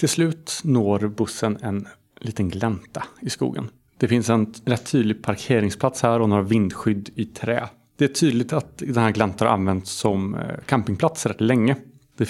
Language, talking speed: Swedish, 170 wpm